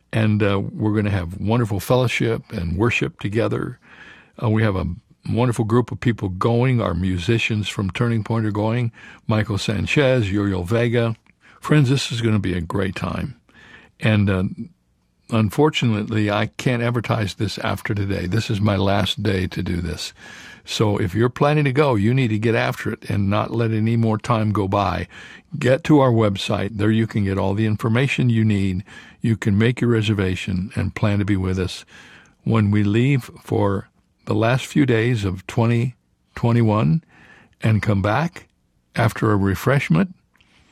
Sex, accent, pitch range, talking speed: male, American, 100-120 Hz, 170 wpm